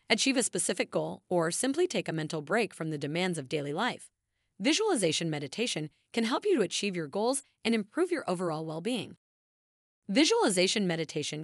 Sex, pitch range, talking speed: female, 160-235 Hz, 170 wpm